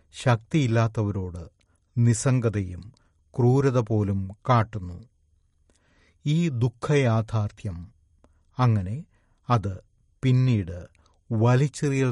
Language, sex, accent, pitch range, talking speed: Malayalam, male, native, 90-120 Hz, 55 wpm